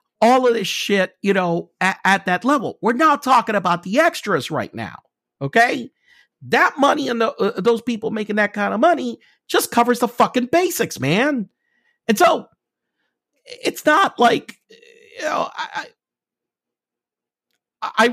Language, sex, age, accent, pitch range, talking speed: English, male, 50-69, American, 120-200 Hz, 150 wpm